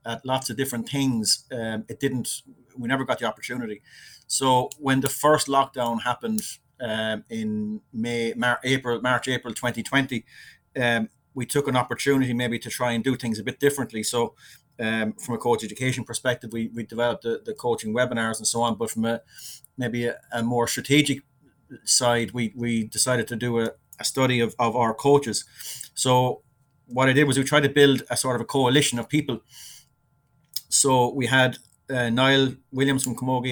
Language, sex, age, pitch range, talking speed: English, male, 30-49, 115-135 Hz, 185 wpm